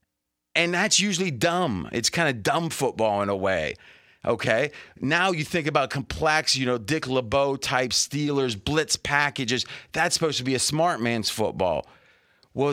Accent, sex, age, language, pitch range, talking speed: American, male, 30-49, English, 115-145 Hz, 160 wpm